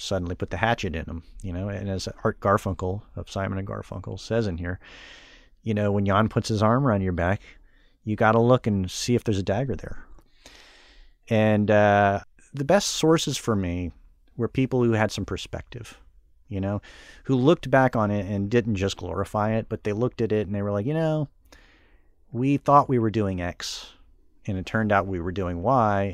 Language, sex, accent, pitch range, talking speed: English, male, American, 95-115 Hz, 205 wpm